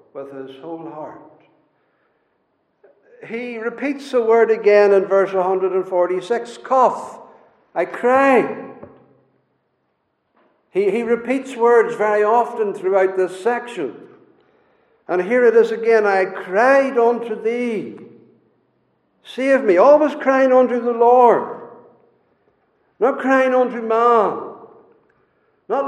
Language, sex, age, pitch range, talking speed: English, male, 60-79, 195-275 Hz, 110 wpm